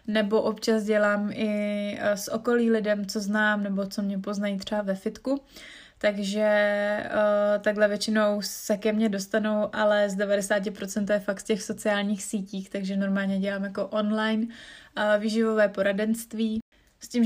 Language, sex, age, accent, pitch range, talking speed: Czech, female, 20-39, native, 200-220 Hz, 150 wpm